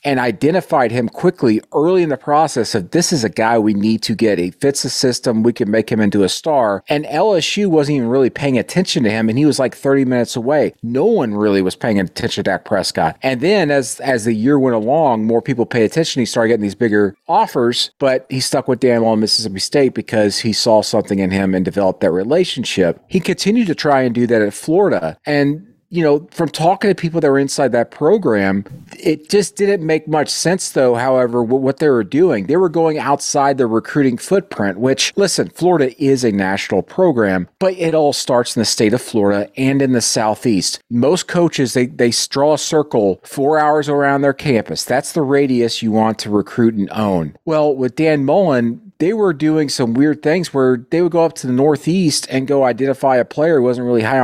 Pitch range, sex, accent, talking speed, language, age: 115-155 Hz, male, American, 220 wpm, English, 40-59